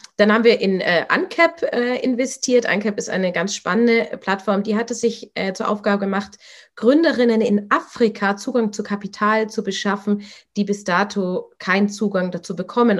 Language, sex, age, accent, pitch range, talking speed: German, female, 30-49, German, 185-225 Hz, 165 wpm